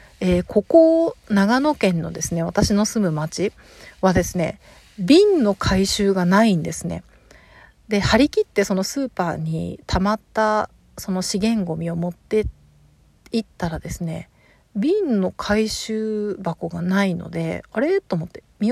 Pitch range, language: 180-230 Hz, Japanese